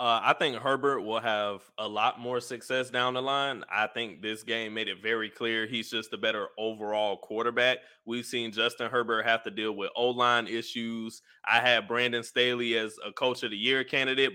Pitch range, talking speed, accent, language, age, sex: 115-145 Hz, 200 wpm, American, English, 20-39, male